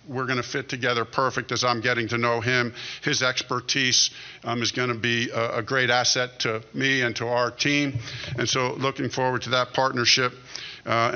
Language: English